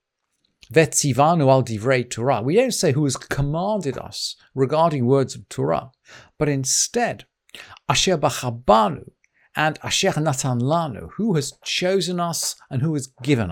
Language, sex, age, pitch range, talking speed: English, male, 50-69, 130-195 Hz, 115 wpm